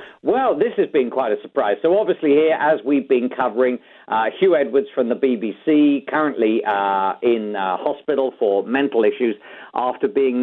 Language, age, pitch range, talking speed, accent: English, 50-69, 130-195 Hz, 175 wpm, British